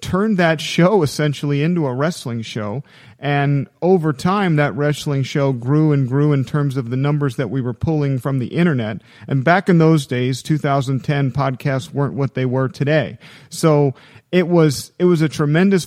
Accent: American